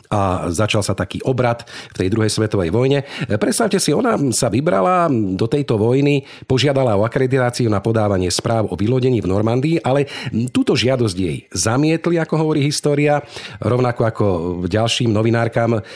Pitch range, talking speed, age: 105-130 Hz, 150 wpm, 50-69